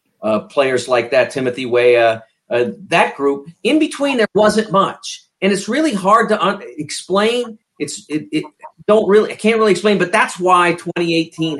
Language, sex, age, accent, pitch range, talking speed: English, male, 50-69, American, 130-185 Hz, 180 wpm